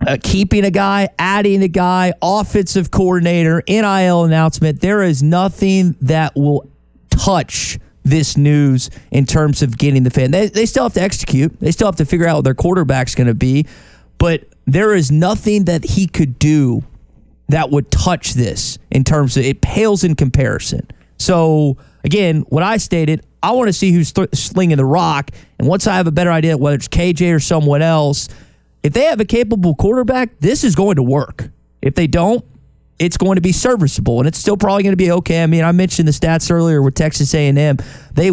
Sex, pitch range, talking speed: male, 140-195 Hz, 195 wpm